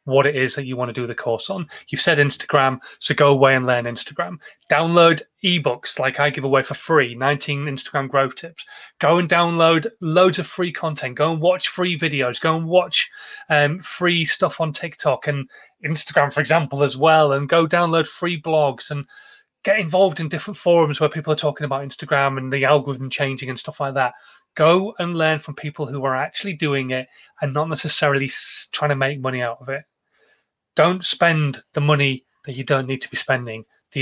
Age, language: 30-49, English